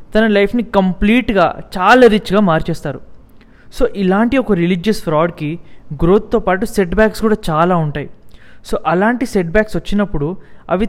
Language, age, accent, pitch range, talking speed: English, 20-39, Indian, 160-215 Hz, 160 wpm